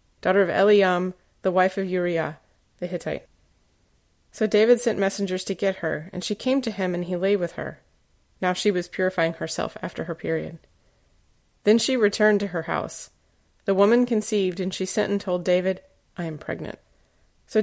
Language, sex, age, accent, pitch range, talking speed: English, female, 30-49, American, 170-210 Hz, 180 wpm